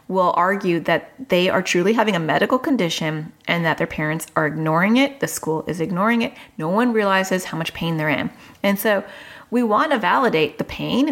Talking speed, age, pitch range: 205 wpm, 30-49, 170-235 Hz